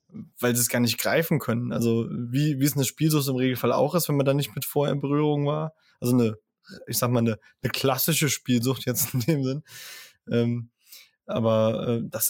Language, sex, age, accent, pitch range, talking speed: German, male, 20-39, German, 125-165 Hz, 210 wpm